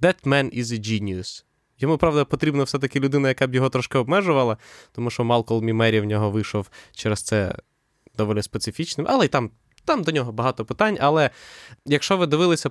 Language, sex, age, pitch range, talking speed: Ukrainian, male, 20-39, 110-140 Hz, 180 wpm